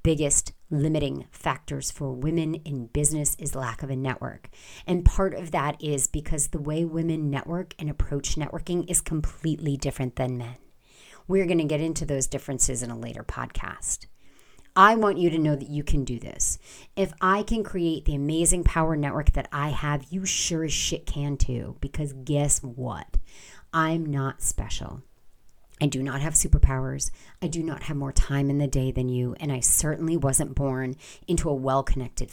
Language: English